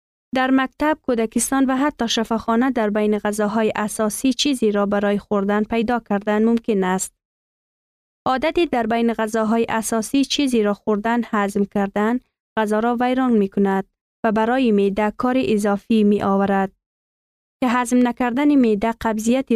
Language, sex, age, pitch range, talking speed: Persian, female, 20-39, 210-255 Hz, 140 wpm